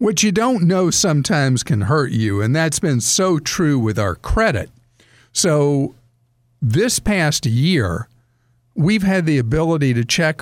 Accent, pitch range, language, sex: American, 120-155 Hz, English, male